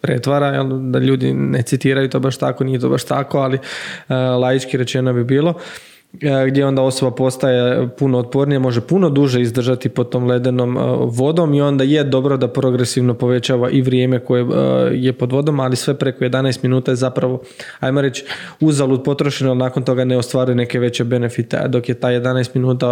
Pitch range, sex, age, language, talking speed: 125-135 Hz, male, 20-39, Croatian, 180 wpm